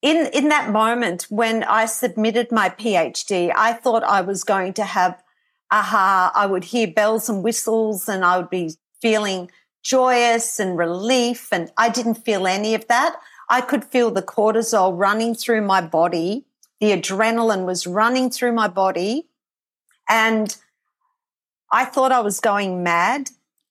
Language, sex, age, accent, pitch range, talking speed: English, female, 50-69, Australian, 195-245 Hz, 155 wpm